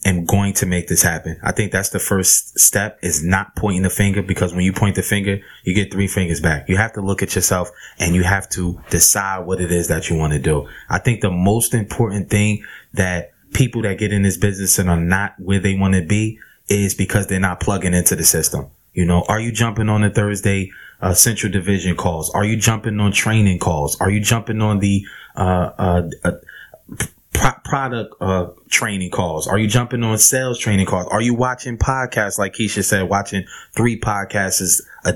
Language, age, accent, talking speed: English, 20-39, American, 210 wpm